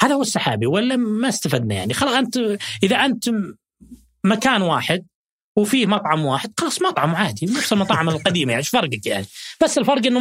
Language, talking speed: Arabic, 170 wpm